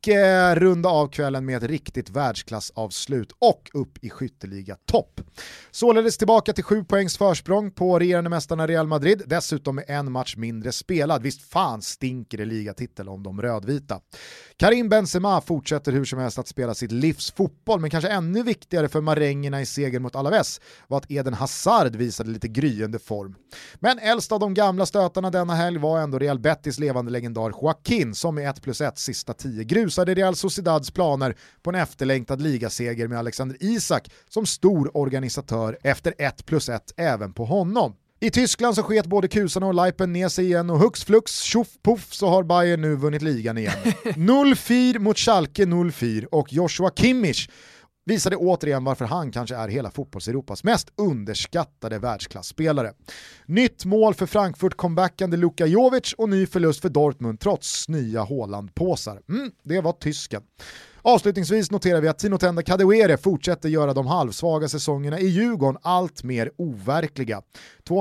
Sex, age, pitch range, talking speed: male, 30-49, 130-190 Hz, 165 wpm